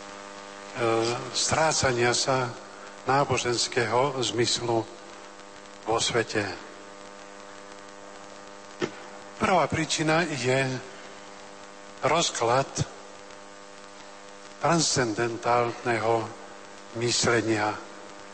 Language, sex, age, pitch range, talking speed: Slovak, male, 50-69, 100-120 Hz, 40 wpm